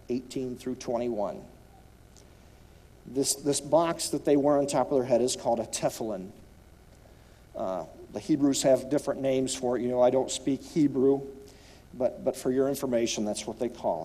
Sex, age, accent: male, 50-69, American